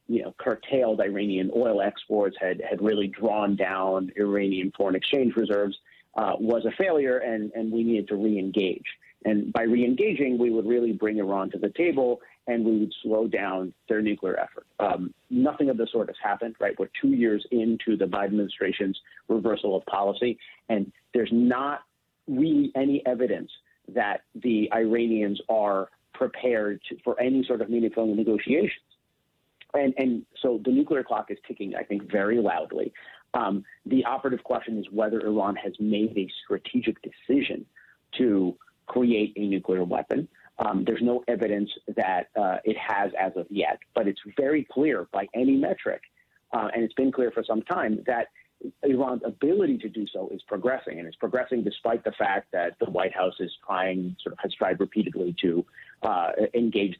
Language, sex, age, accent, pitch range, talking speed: English, male, 40-59, American, 100-120 Hz, 170 wpm